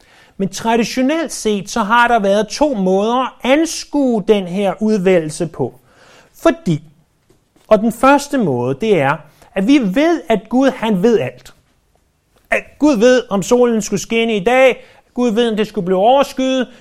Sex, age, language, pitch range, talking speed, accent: male, 30-49, Danish, 180-240 Hz, 165 wpm, native